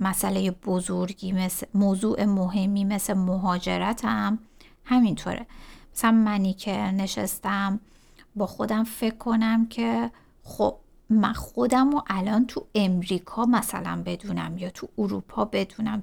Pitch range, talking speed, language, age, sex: 190-225 Hz, 115 wpm, Persian, 50-69, female